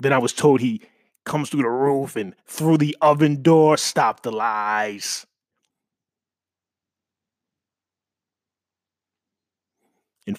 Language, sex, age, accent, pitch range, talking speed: English, male, 30-49, American, 100-145 Hz, 105 wpm